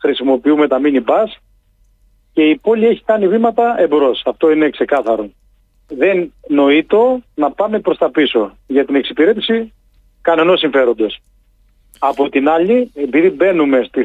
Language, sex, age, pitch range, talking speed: Greek, male, 40-59, 125-185 Hz, 135 wpm